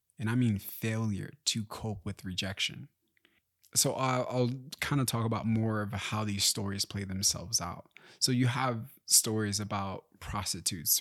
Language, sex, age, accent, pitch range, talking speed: English, male, 20-39, American, 100-120 Hz, 155 wpm